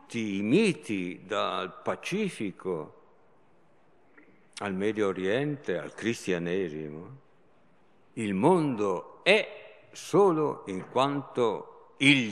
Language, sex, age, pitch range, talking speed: Italian, male, 60-79, 110-170 Hz, 80 wpm